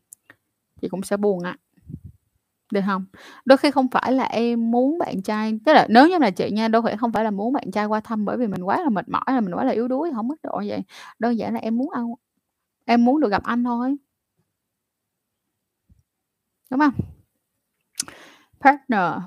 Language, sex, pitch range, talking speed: Vietnamese, female, 210-255 Hz, 200 wpm